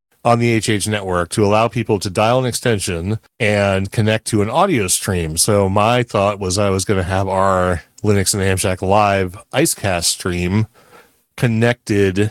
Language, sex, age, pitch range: English, male, 30-49, 95-115 Hz